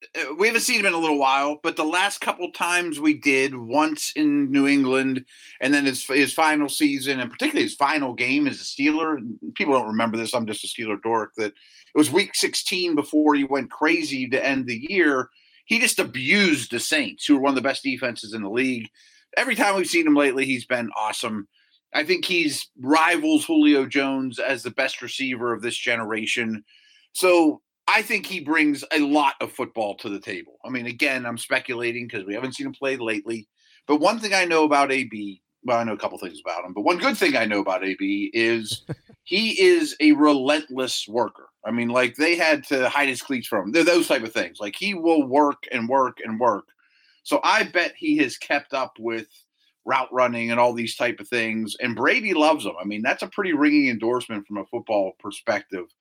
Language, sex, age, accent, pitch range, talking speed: English, male, 30-49, American, 120-200 Hz, 215 wpm